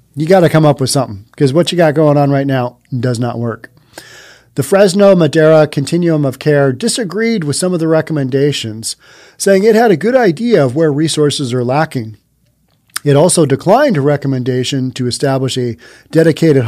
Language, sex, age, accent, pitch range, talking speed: English, male, 40-59, American, 125-170 Hz, 180 wpm